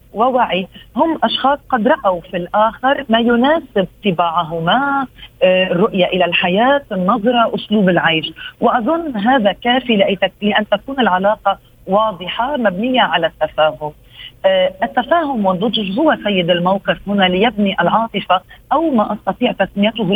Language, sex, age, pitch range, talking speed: Arabic, female, 40-59, 185-235 Hz, 115 wpm